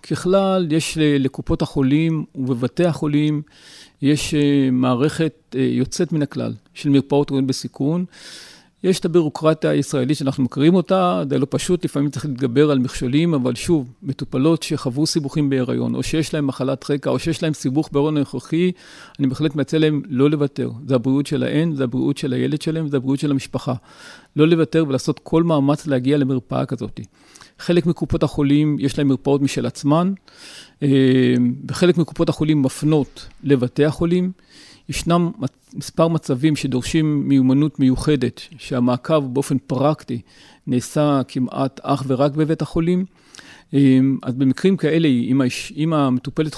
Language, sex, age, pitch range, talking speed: Hebrew, male, 40-59, 135-160 Hz, 140 wpm